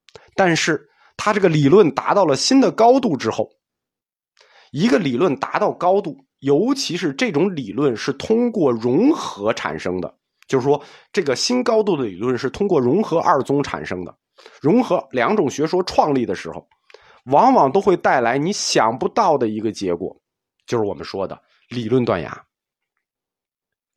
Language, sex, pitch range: Chinese, male, 135-220 Hz